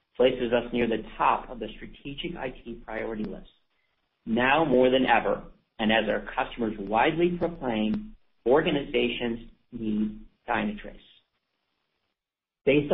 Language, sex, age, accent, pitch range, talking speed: English, male, 50-69, American, 110-140 Hz, 115 wpm